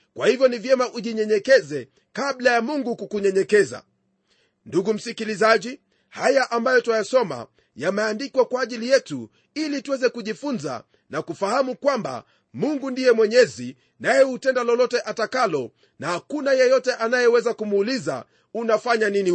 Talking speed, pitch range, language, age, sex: 120 wpm, 215-260 Hz, Swahili, 40-59, male